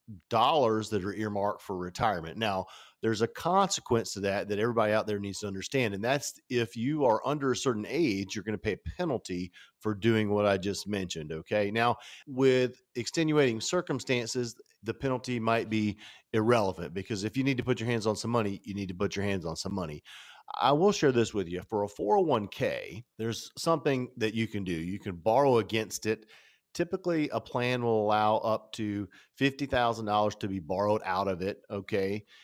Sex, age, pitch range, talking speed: male, 40-59, 100-125 Hz, 195 wpm